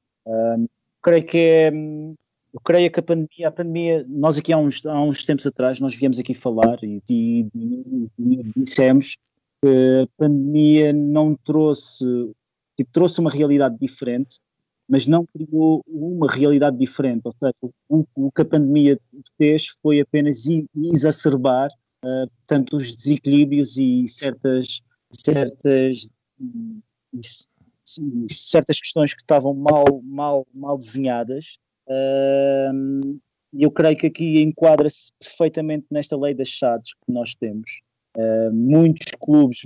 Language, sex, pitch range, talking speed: Portuguese, male, 130-155 Hz, 135 wpm